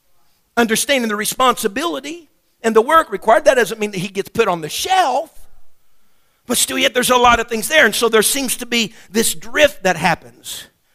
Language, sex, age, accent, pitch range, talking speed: English, male, 50-69, American, 180-280 Hz, 195 wpm